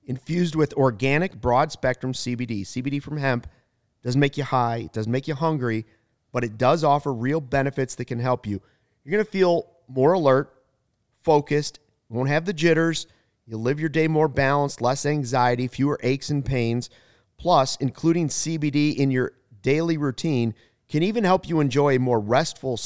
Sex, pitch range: male, 120-145 Hz